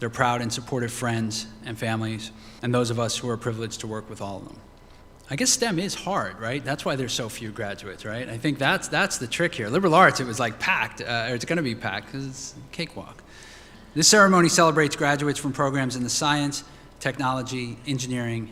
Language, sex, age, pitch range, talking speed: English, male, 30-49, 115-135 Hz, 215 wpm